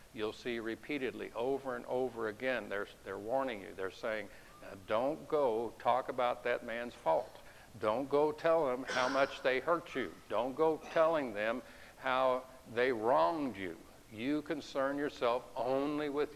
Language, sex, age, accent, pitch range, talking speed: English, male, 60-79, American, 115-145 Hz, 155 wpm